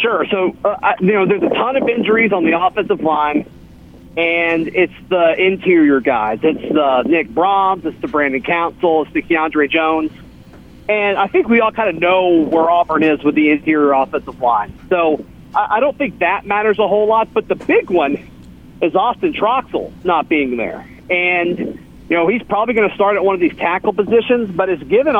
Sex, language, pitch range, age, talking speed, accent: male, English, 160-205 Hz, 40-59, 200 wpm, American